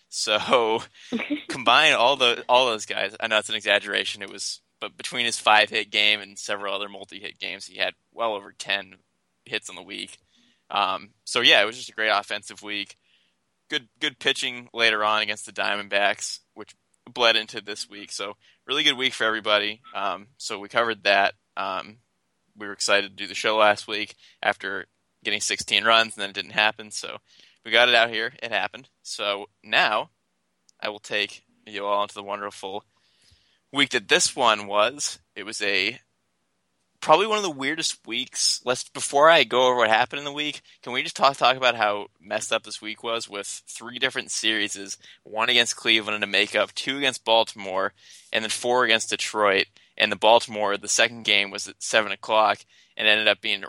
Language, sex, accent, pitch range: English, male, American, 100-115 Hz